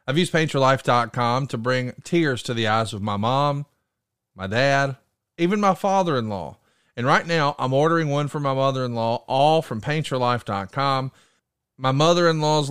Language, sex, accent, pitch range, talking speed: English, male, American, 125-165 Hz, 145 wpm